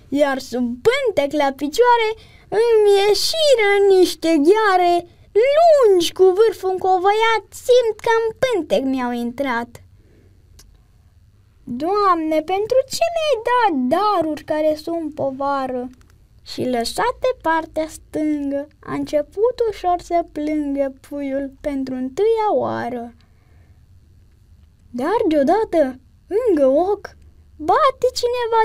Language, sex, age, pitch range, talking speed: Romanian, female, 20-39, 270-410 Hz, 100 wpm